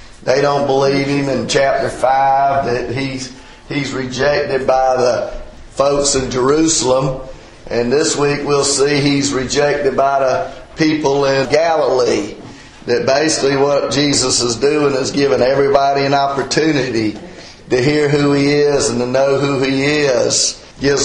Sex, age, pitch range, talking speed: male, 40-59, 130-145 Hz, 145 wpm